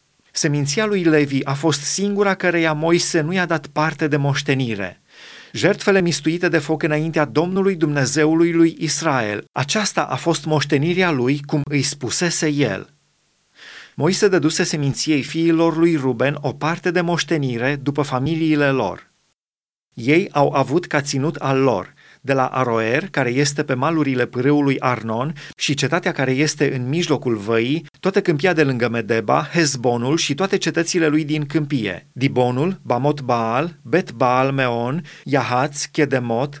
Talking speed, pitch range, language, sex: 145 wpm, 130-165 Hz, Romanian, male